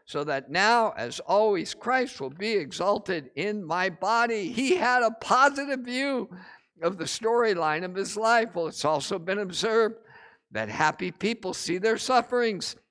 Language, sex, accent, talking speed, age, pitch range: English, male, American, 160 wpm, 50-69, 180-240 Hz